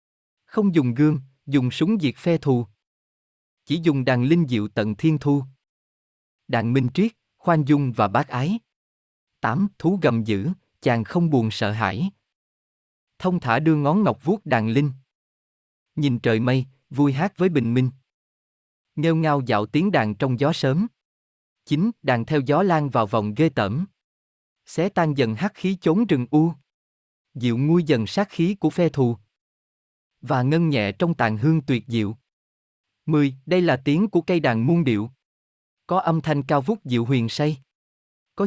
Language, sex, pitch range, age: Vietnamese, male, 115-165 Hz, 20-39